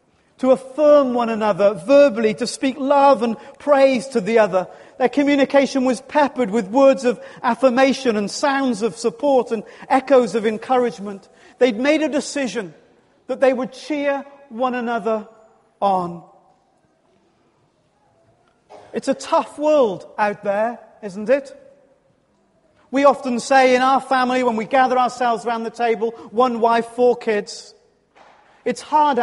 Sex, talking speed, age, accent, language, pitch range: male, 140 wpm, 40-59, British, English, 225-280 Hz